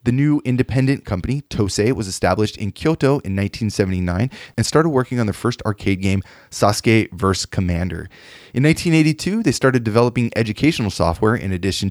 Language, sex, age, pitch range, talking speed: English, male, 20-39, 100-130 Hz, 155 wpm